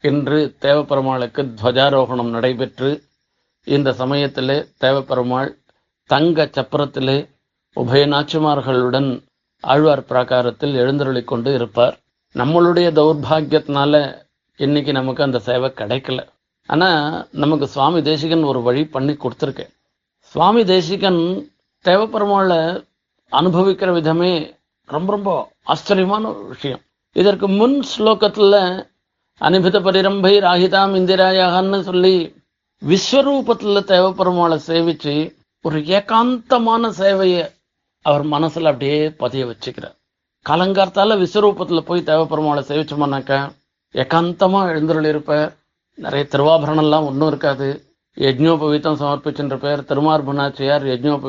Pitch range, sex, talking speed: 140-185 Hz, male, 85 wpm